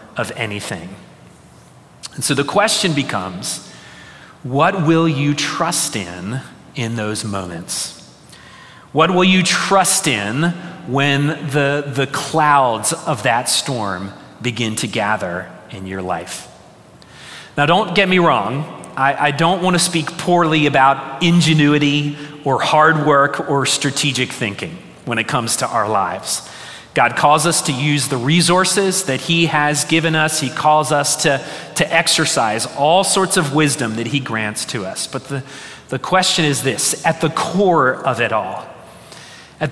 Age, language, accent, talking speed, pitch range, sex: 30-49, English, American, 150 wpm, 130-170 Hz, male